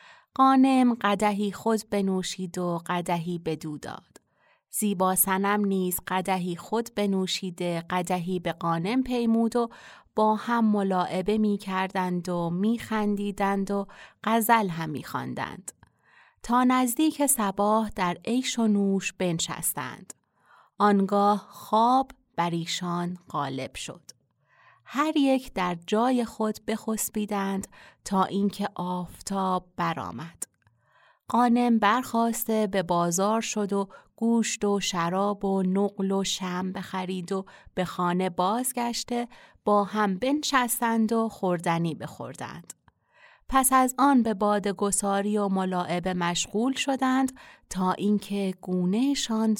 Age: 30-49